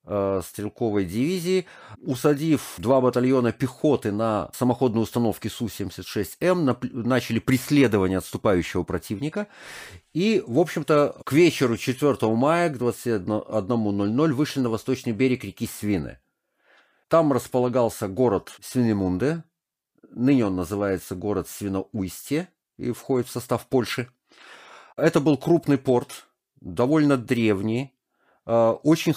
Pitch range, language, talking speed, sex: 105-135 Hz, Russian, 105 wpm, male